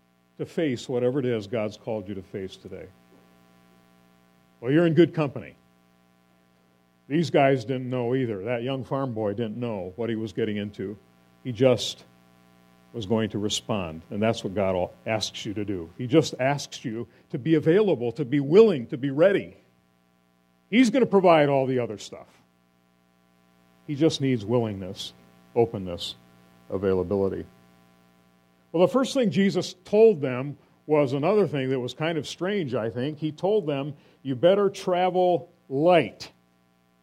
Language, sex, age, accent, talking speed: English, male, 50-69, American, 155 wpm